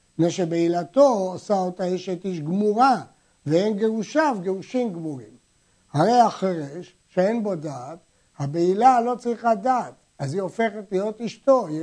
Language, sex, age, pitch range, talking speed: Hebrew, male, 60-79, 170-215 Hz, 130 wpm